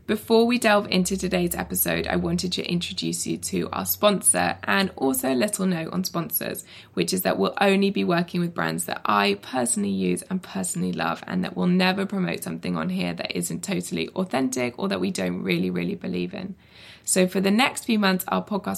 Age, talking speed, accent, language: 20-39, 210 wpm, British, English